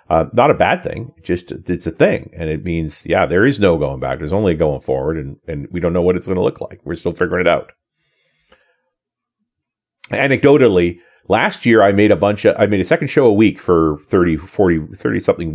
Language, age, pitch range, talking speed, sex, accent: English, 40-59, 85-115 Hz, 225 wpm, male, American